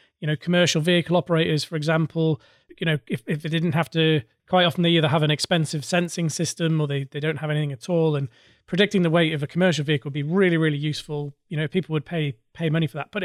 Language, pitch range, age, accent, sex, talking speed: English, 155-195 Hz, 30-49, British, male, 250 wpm